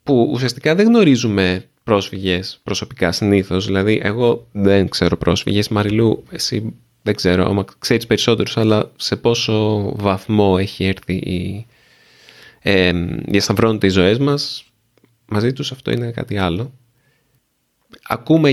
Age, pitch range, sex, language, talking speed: 20-39, 100-140 Hz, male, Greek, 125 wpm